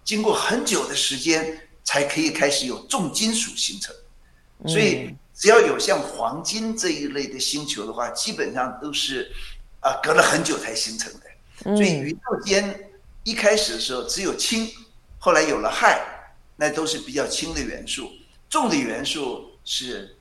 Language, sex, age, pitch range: Chinese, male, 50-69, 150-245 Hz